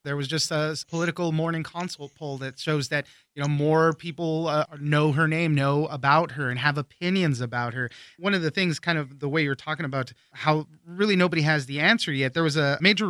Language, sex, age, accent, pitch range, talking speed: English, male, 30-49, American, 140-165 Hz, 225 wpm